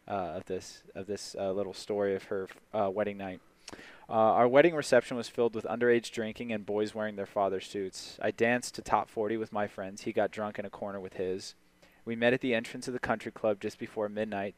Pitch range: 100-115 Hz